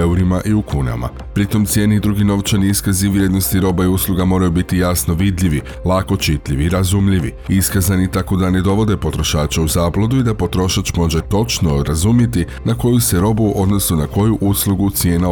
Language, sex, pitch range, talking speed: Croatian, male, 85-100 Hz, 175 wpm